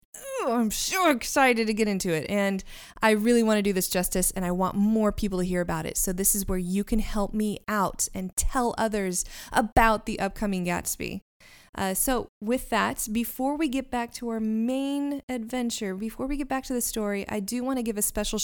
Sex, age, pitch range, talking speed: female, 20-39, 185-230 Hz, 215 wpm